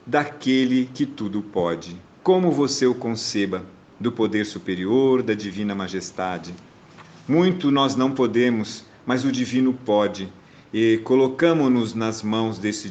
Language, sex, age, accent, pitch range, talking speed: Portuguese, male, 50-69, Brazilian, 105-130 Hz, 125 wpm